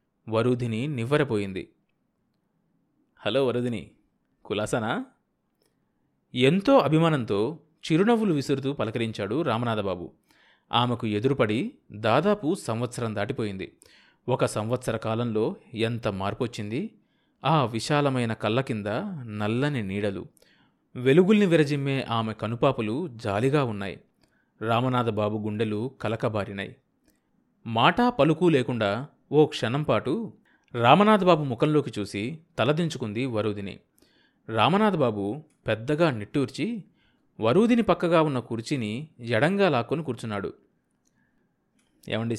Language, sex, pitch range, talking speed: Telugu, male, 110-145 Hz, 85 wpm